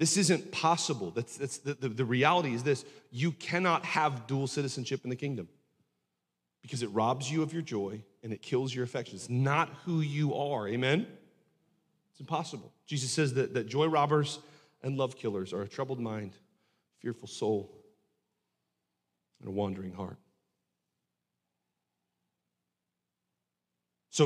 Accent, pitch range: American, 130-175 Hz